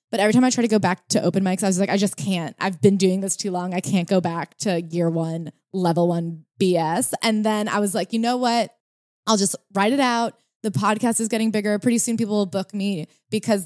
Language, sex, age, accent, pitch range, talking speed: English, female, 20-39, American, 175-205 Hz, 255 wpm